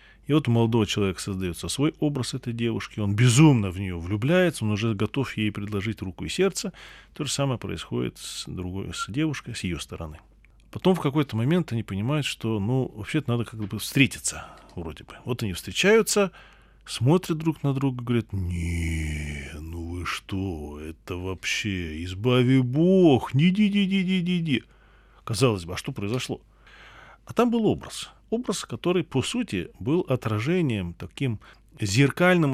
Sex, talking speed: male, 155 wpm